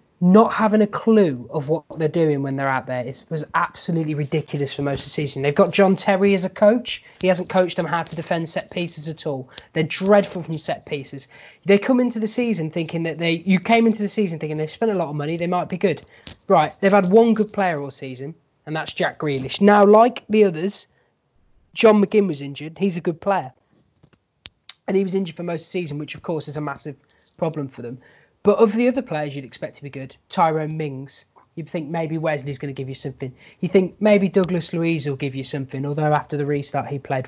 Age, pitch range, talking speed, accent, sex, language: 20-39, 145-195 Hz, 235 wpm, British, male, English